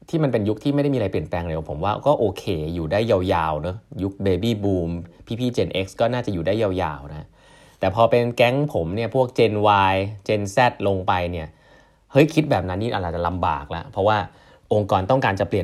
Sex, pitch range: male, 95-125 Hz